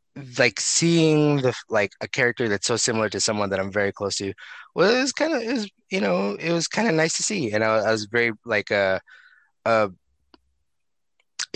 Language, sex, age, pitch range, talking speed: English, male, 20-39, 100-130 Hz, 200 wpm